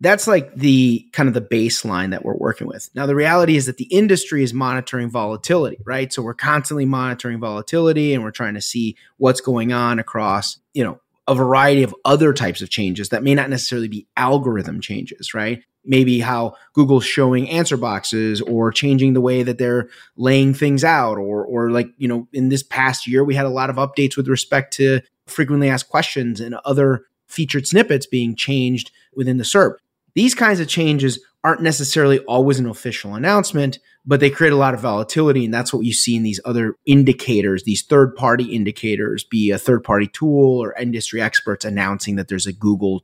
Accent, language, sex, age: American, English, male, 30-49